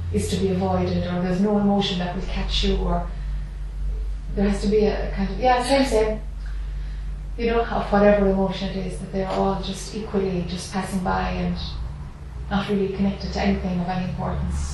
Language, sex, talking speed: English, female, 195 wpm